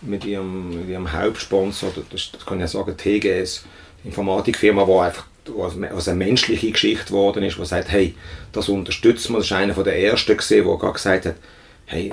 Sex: male